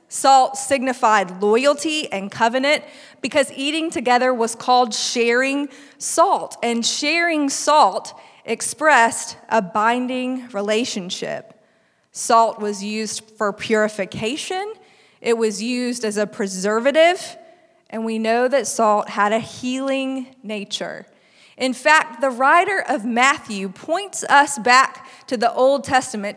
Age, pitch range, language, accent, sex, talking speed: 20-39, 225-285 Hz, English, American, female, 120 wpm